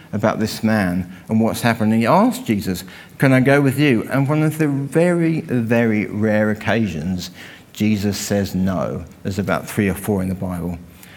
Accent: British